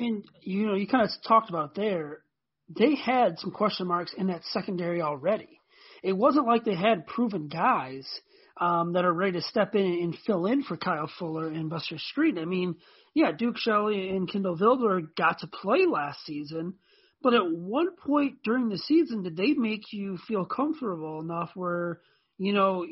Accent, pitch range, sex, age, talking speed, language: American, 175-230 Hz, male, 30-49, 185 wpm, English